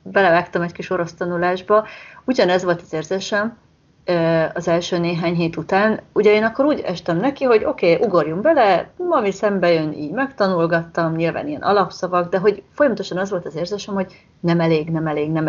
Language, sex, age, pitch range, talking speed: Hungarian, female, 30-49, 165-210 Hz, 180 wpm